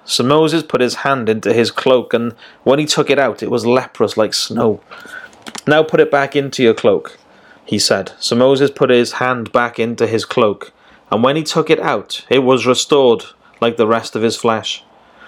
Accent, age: British, 30-49